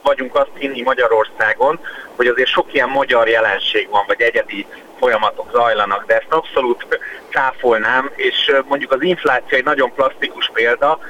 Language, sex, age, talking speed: Hungarian, male, 30-49, 145 wpm